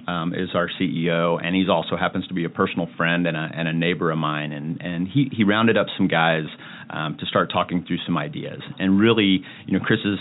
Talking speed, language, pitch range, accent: 240 wpm, English, 85-95 Hz, American